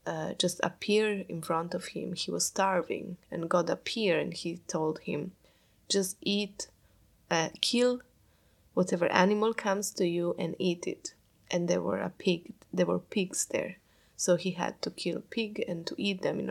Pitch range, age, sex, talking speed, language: 170-195 Hz, 20-39, female, 180 wpm, English